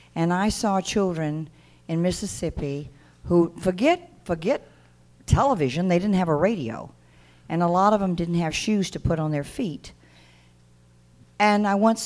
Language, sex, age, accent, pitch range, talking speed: English, female, 50-69, American, 135-185 Hz, 155 wpm